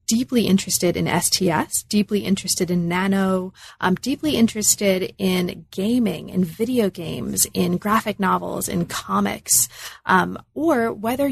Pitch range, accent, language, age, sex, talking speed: 175-205 Hz, American, English, 30-49, female, 125 wpm